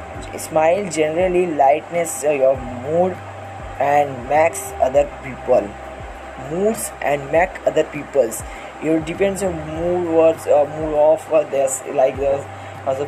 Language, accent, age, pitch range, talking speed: Hindi, native, 10-29, 135-170 Hz, 140 wpm